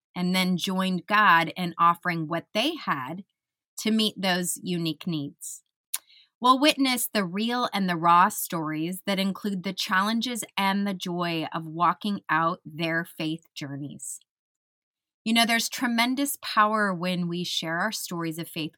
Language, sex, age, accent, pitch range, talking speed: English, female, 20-39, American, 170-215 Hz, 150 wpm